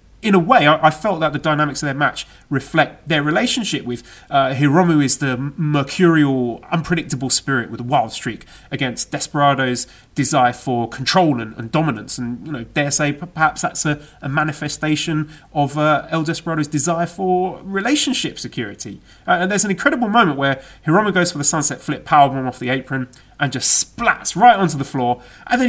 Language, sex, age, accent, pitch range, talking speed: English, male, 30-49, British, 135-180 Hz, 185 wpm